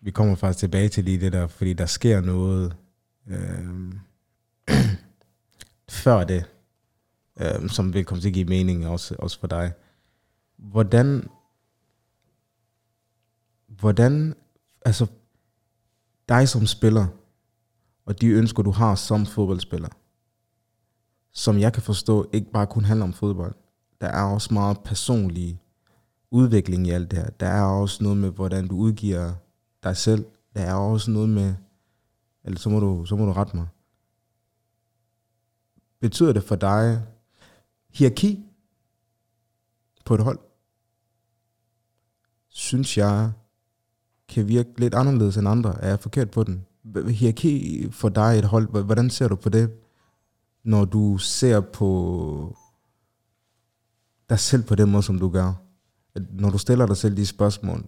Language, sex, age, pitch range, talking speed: Danish, male, 20-39, 100-115 Hz, 135 wpm